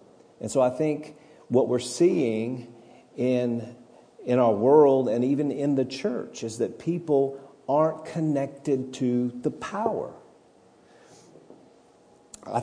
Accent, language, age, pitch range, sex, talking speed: American, English, 50-69, 110-140 Hz, male, 120 wpm